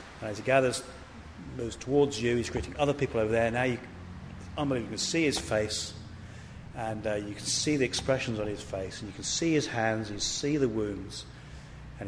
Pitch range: 95-125 Hz